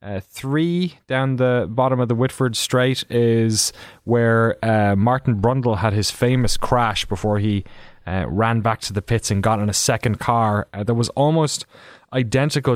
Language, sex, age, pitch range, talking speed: English, male, 20-39, 105-125 Hz, 170 wpm